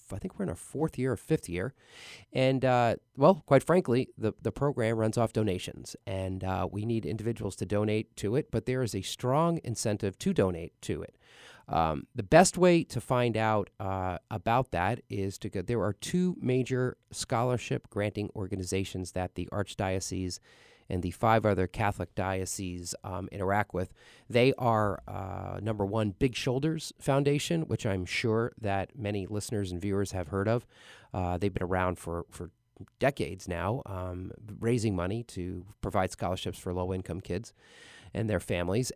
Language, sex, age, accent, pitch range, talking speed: English, male, 30-49, American, 95-125 Hz, 170 wpm